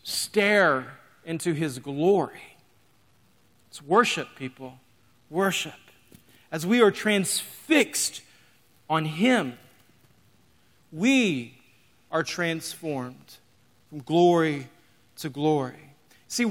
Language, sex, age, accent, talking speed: English, male, 40-59, American, 80 wpm